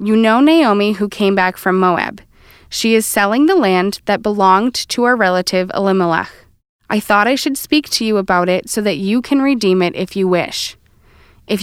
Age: 20-39